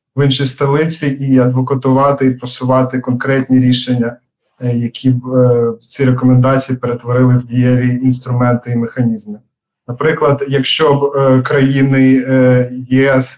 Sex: male